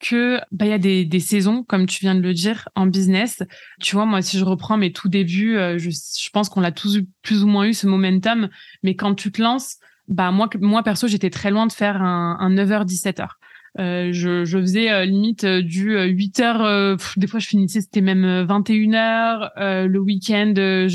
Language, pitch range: French, 190-220 Hz